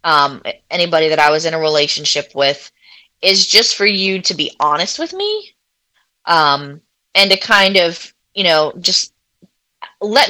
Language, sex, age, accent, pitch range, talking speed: English, female, 20-39, American, 160-195 Hz, 155 wpm